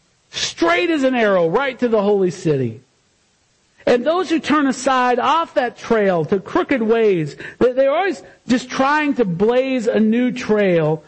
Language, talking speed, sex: English, 155 wpm, male